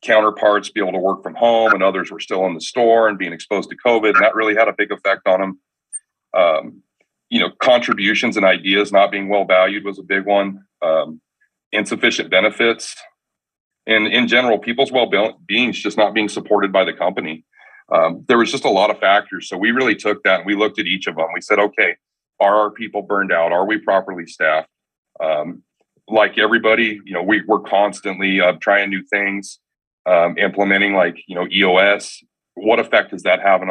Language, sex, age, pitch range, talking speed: English, male, 40-59, 95-110 Hz, 200 wpm